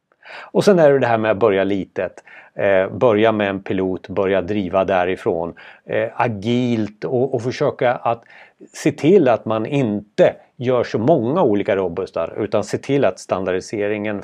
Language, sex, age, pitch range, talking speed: Swedish, male, 30-49, 95-125 Hz, 150 wpm